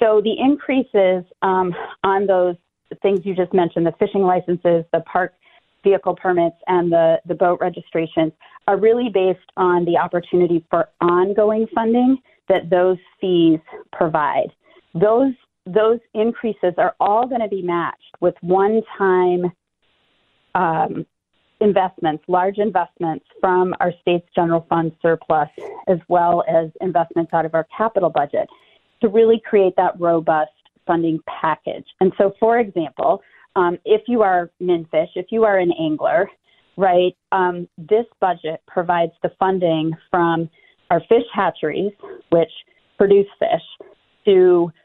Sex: female